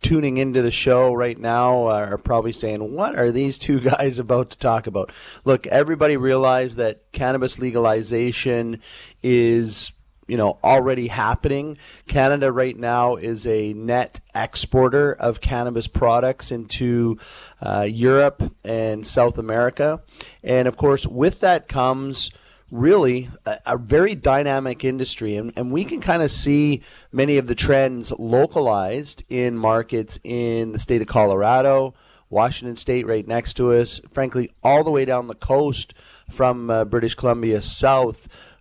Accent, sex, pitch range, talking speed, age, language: American, male, 115-135 Hz, 145 wpm, 30-49, English